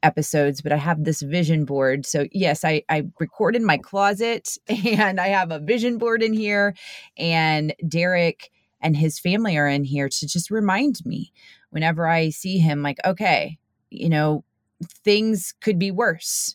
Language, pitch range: English, 155-195 Hz